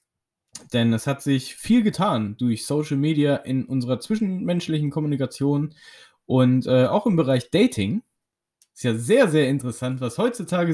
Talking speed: 145 wpm